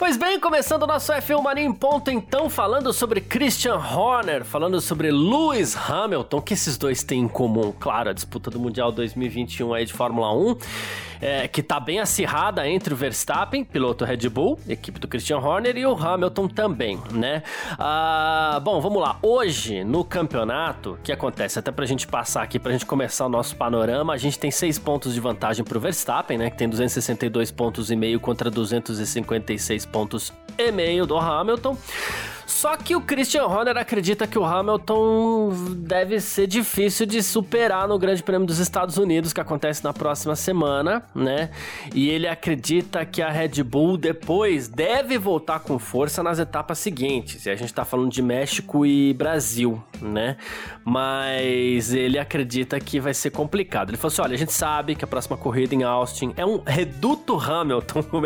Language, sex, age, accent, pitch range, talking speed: Portuguese, male, 20-39, Brazilian, 125-200 Hz, 175 wpm